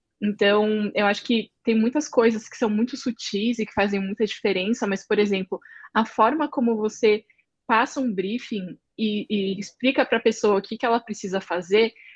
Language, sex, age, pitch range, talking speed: Portuguese, female, 10-29, 205-240 Hz, 190 wpm